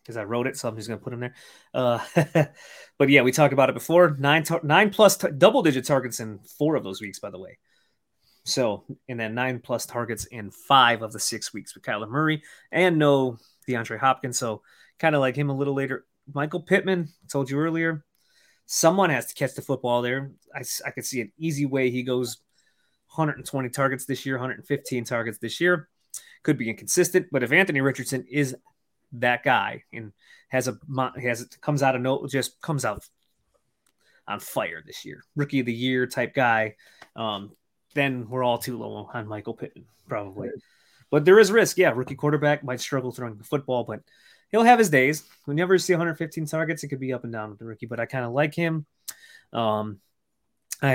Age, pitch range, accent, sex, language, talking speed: 30-49, 120-150 Hz, American, male, English, 205 wpm